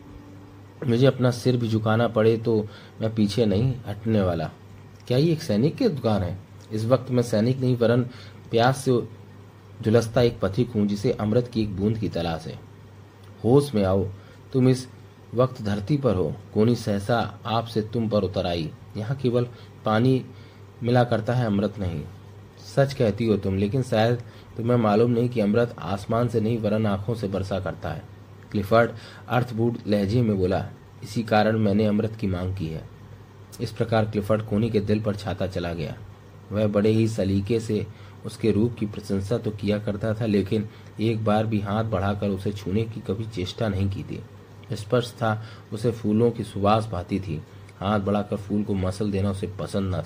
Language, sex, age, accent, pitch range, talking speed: Hindi, male, 30-49, native, 100-115 Hz, 180 wpm